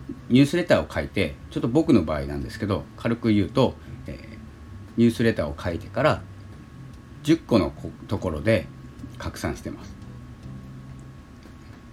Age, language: 40-59, Japanese